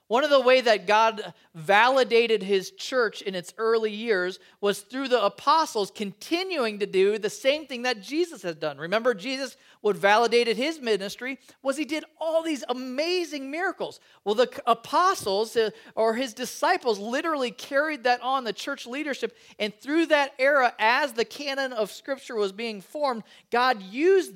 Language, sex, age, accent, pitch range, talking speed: English, male, 40-59, American, 205-275 Hz, 165 wpm